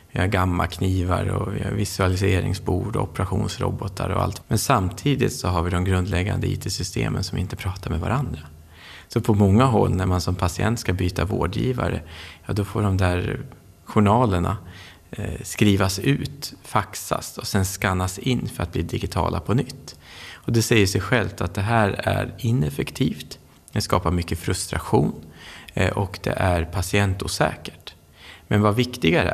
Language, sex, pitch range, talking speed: Swedish, male, 85-110 Hz, 155 wpm